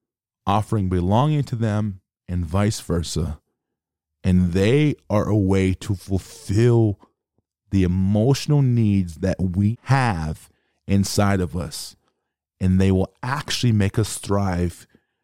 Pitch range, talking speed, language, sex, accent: 95-115 Hz, 120 wpm, English, male, American